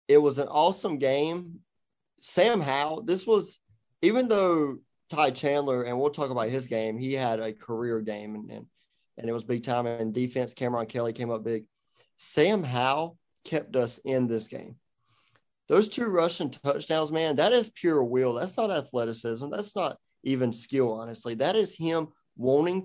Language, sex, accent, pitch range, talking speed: English, male, American, 120-145 Hz, 170 wpm